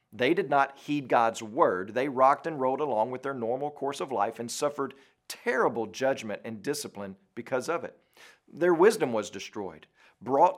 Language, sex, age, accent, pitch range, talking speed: English, male, 50-69, American, 130-150 Hz, 175 wpm